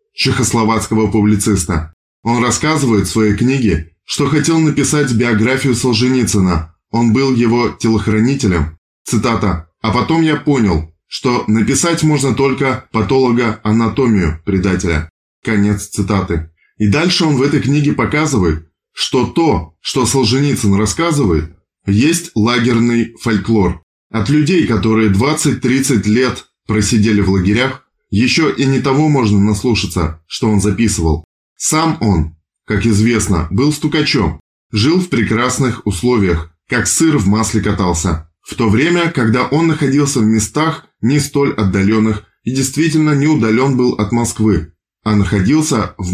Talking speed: 125 wpm